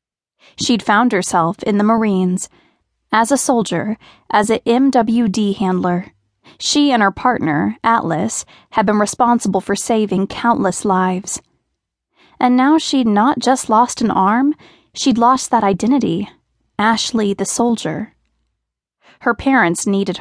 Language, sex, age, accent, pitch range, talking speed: English, female, 20-39, American, 195-250 Hz, 130 wpm